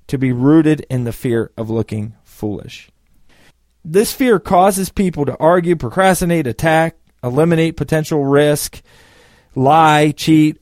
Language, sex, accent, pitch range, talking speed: English, male, American, 120-160 Hz, 125 wpm